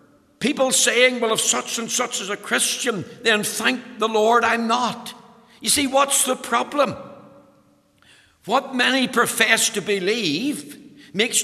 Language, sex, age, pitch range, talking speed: English, male, 60-79, 200-245 Hz, 140 wpm